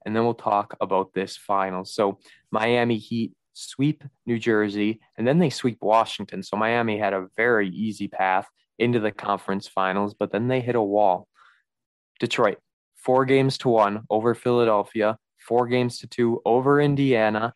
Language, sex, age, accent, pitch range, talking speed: English, male, 20-39, American, 105-125 Hz, 165 wpm